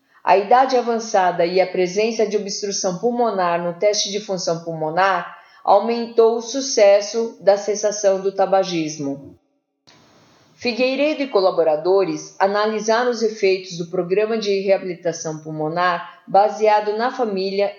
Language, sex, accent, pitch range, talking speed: Portuguese, female, Brazilian, 175-215 Hz, 120 wpm